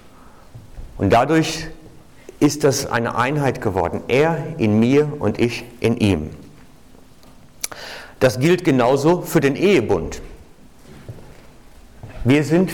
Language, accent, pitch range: German, German, 105-150 Hz